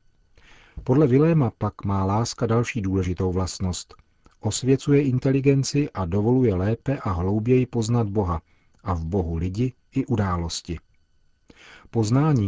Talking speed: 115 wpm